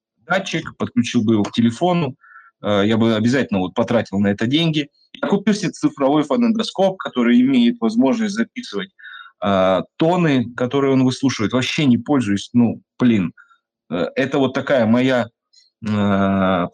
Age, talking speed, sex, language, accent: 30-49, 145 wpm, male, Russian, native